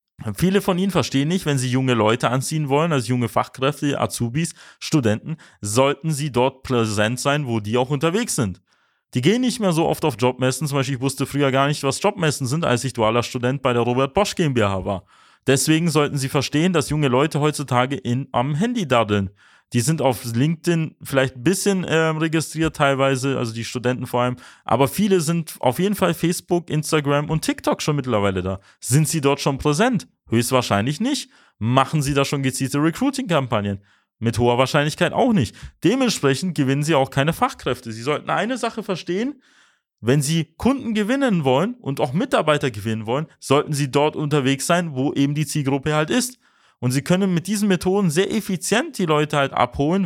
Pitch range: 135-180 Hz